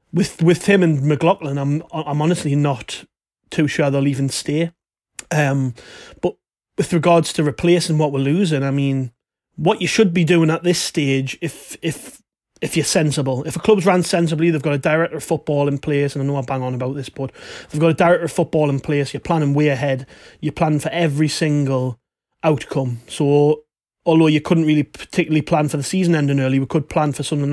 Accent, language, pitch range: British, English, 140-165 Hz